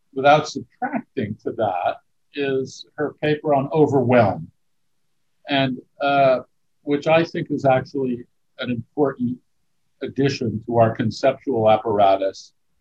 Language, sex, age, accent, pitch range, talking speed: English, male, 50-69, American, 120-155 Hz, 110 wpm